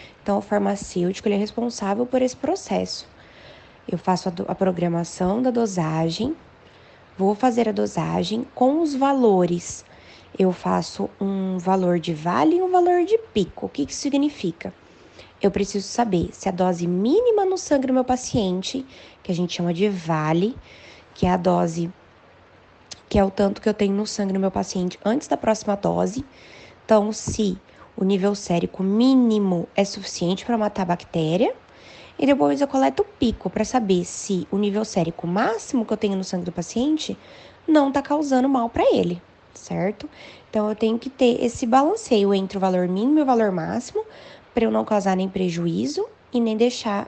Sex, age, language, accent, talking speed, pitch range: female, 20-39, Portuguese, Brazilian, 175 wpm, 180-245 Hz